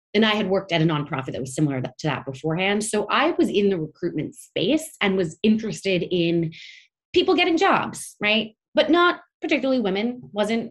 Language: English